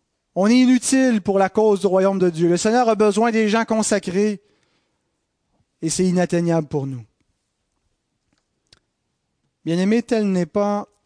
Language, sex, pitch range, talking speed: French, male, 170-230 Hz, 145 wpm